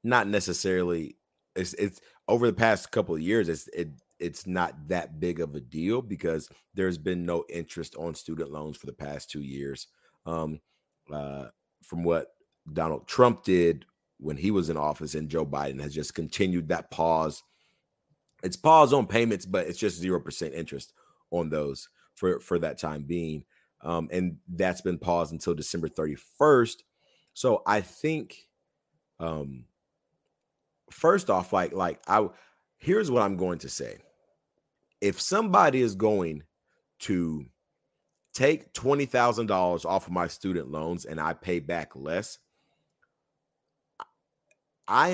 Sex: male